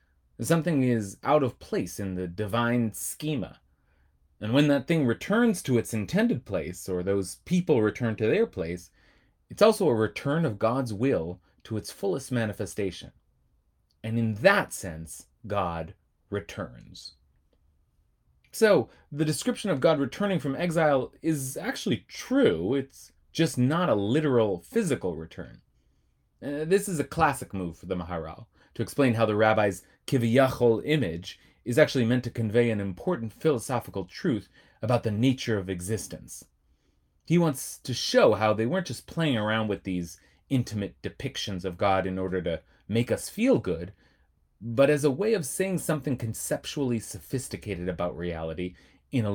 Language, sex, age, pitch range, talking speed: English, male, 30-49, 90-135 Hz, 150 wpm